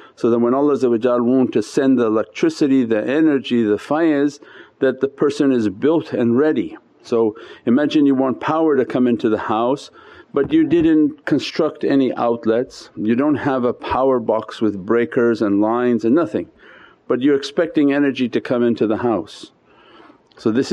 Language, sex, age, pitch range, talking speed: English, male, 50-69, 115-145 Hz, 170 wpm